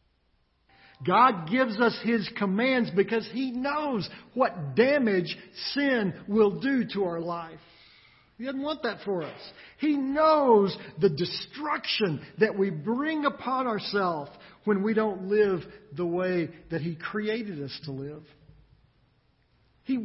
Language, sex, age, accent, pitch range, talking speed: English, male, 50-69, American, 140-225 Hz, 130 wpm